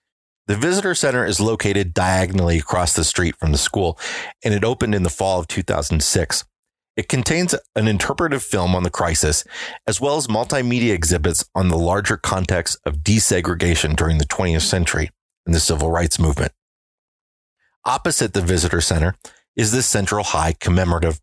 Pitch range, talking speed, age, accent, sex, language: 85-110 Hz, 160 wpm, 30-49, American, male, English